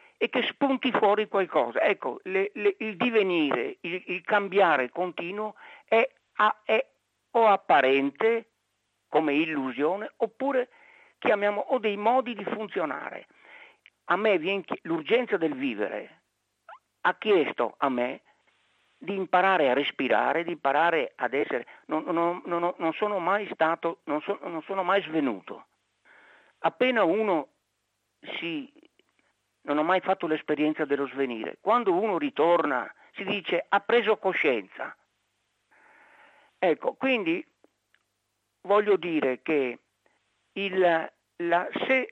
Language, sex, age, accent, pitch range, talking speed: Italian, male, 50-69, native, 160-225 Hz, 110 wpm